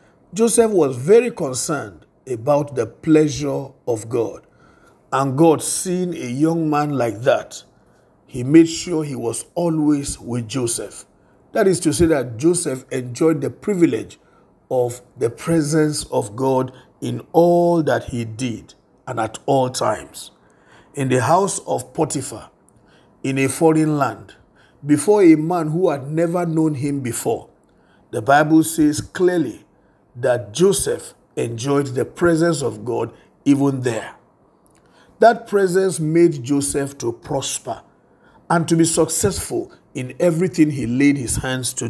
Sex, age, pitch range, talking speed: male, 50-69, 130-170 Hz, 135 wpm